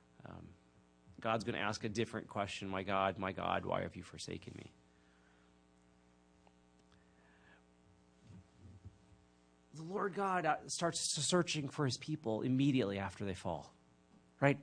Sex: male